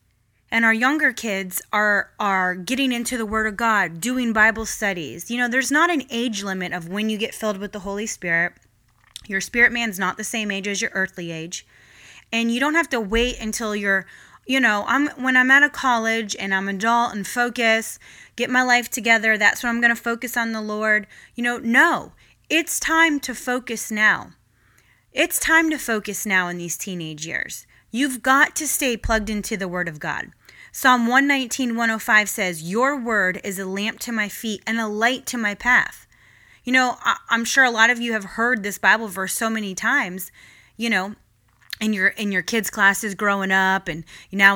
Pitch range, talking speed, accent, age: 195-250 Hz, 205 wpm, American, 20-39